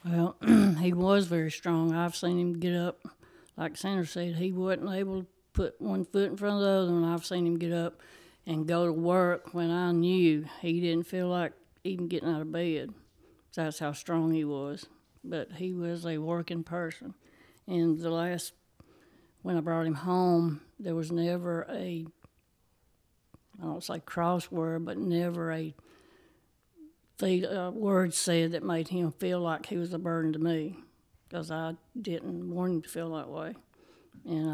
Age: 60-79